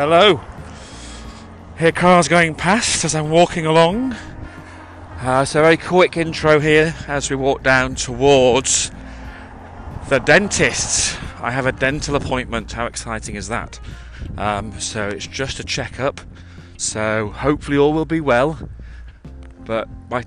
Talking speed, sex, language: 135 wpm, male, English